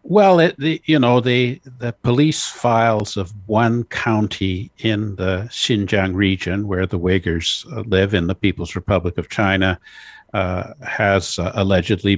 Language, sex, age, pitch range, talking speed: English, male, 60-79, 95-110 Hz, 150 wpm